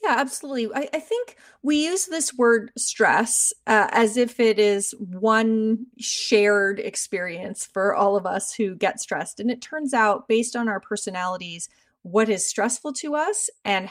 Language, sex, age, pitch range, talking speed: English, female, 30-49, 190-230 Hz, 170 wpm